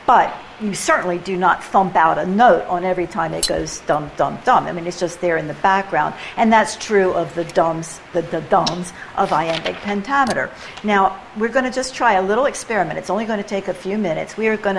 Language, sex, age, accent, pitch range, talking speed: English, female, 60-79, American, 170-200 Hz, 220 wpm